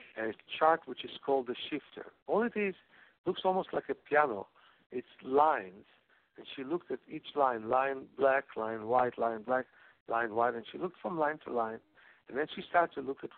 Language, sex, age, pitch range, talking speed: English, male, 60-79, 115-170 Hz, 200 wpm